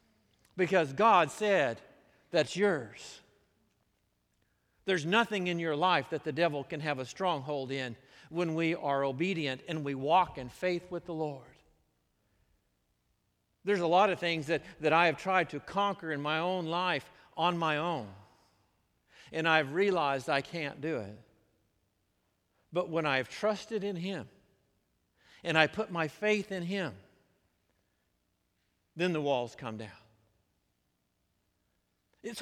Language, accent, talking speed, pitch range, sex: English, American, 140 wpm, 120-180 Hz, male